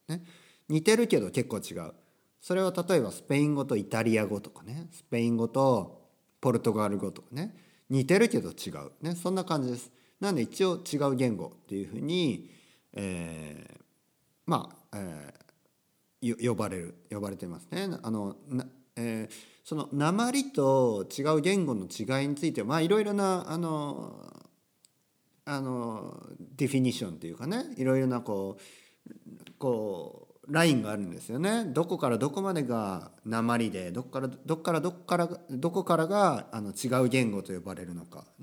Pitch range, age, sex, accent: 110-170 Hz, 50-69, male, native